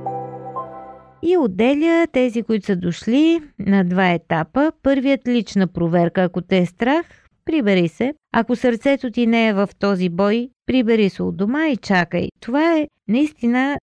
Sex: female